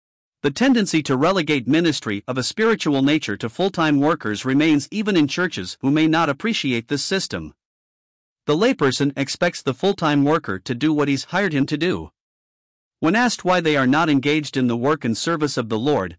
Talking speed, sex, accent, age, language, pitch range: 195 wpm, male, American, 50-69, English, 130-175 Hz